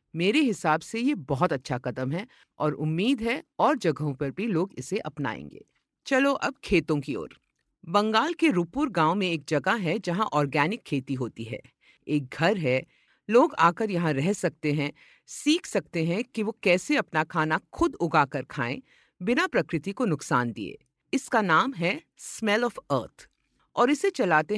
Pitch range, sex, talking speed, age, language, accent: 145-220 Hz, female, 175 wpm, 50-69, Hindi, native